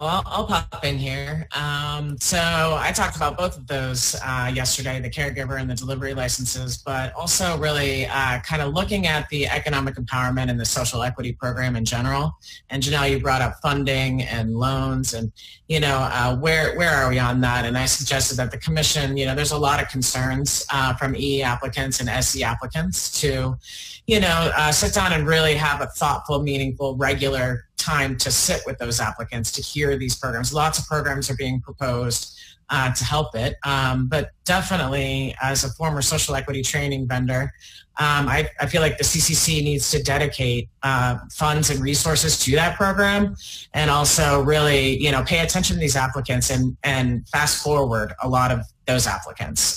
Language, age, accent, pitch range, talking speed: English, 30-49, American, 125-145 Hz, 180 wpm